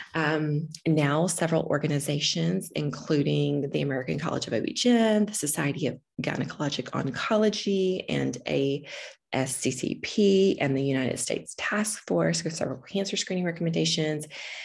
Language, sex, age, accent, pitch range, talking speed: English, female, 20-39, American, 145-185 Hz, 120 wpm